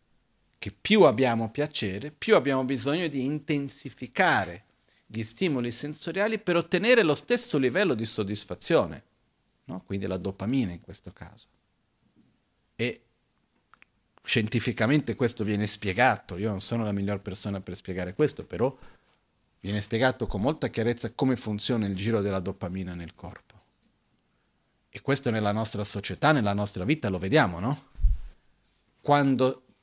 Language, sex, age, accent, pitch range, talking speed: Italian, male, 40-59, native, 100-130 Hz, 130 wpm